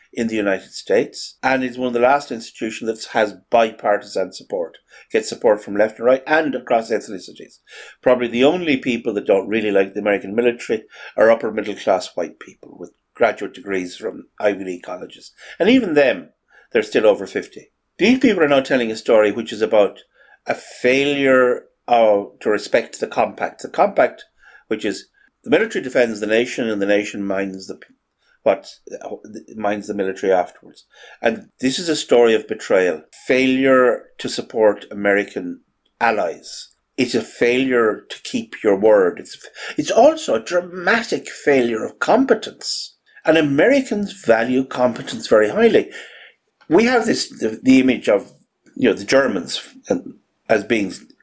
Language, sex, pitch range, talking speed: English, male, 105-140 Hz, 160 wpm